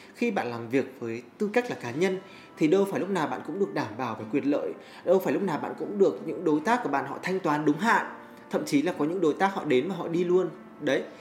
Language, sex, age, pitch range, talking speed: Vietnamese, male, 20-39, 140-210 Hz, 290 wpm